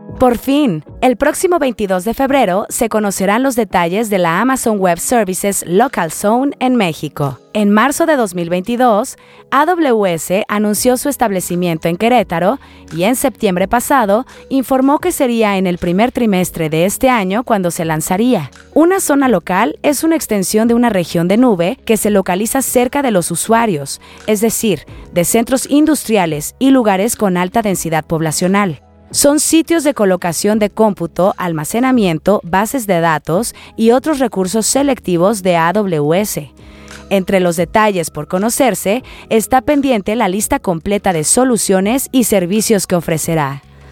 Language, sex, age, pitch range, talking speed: Spanish, female, 30-49, 175-245 Hz, 150 wpm